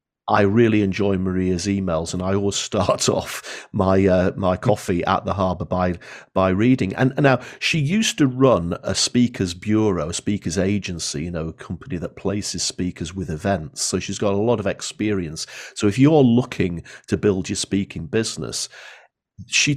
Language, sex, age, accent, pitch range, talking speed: English, male, 50-69, British, 85-105 Hz, 180 wpm